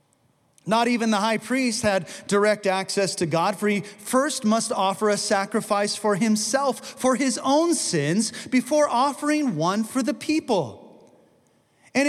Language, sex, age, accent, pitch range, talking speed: English, male, 30-49, American, 165-240 Hz, 150 wpm